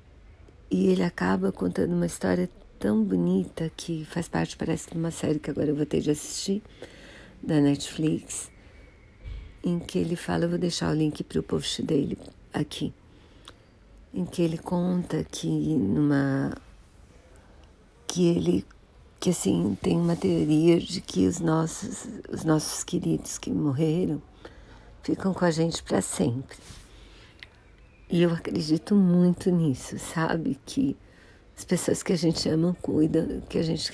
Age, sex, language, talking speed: 50-69, female, Portuguese, 145 wpm